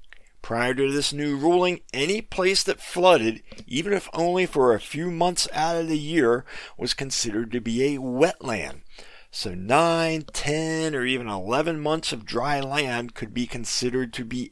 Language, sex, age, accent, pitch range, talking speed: English, male, 50-69, American, 125-170 Hz, 170 wpm